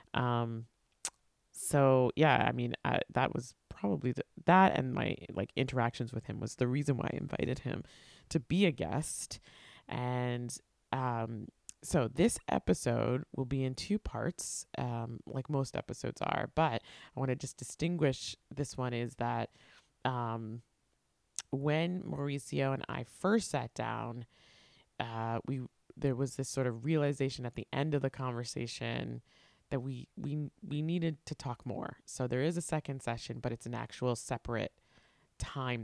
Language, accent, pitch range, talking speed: English, American, 115-145 Hz, 160 wpm